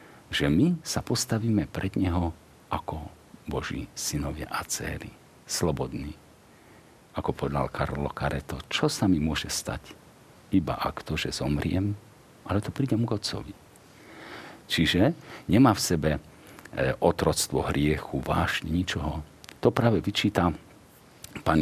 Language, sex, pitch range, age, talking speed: Slovak, male, 75-95 Hz, 50-69, 120 wpm